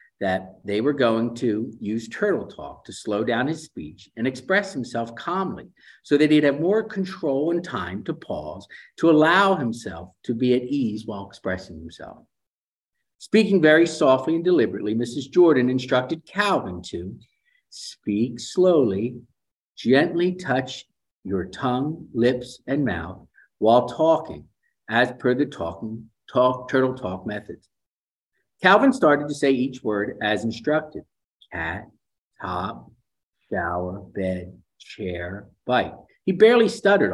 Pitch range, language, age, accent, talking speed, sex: 110-165 Hz, English, 50-69, American, 135 wpm, male